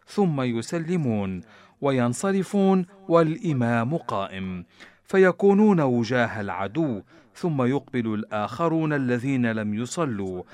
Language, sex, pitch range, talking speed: Arabic, male, 105-165 Hz, 80 wpm